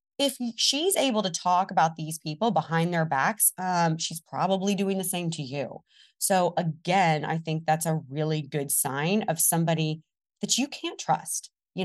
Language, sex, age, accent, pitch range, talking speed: English, female, 20-39, American, 160-220 Hz, 175 wpm